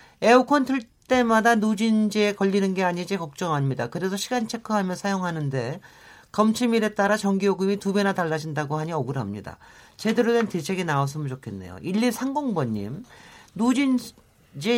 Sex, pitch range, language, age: male, 155-220 Hz, Korean, 40-59